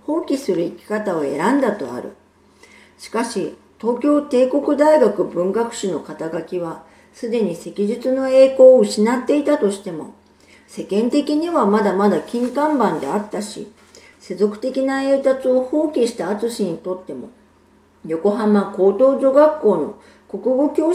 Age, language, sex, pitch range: 50-69, Japanese, female, 195-265 Hz